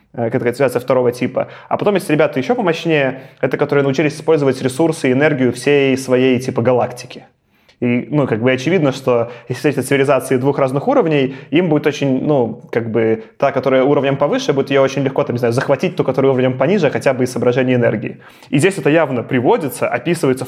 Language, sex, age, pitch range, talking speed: Russian, male, 20-39, 125-145 Hz, 190 wpm